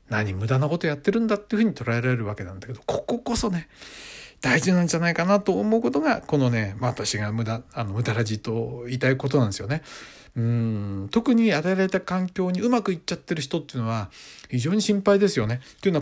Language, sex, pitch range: Japanese, male, 115-165 Hz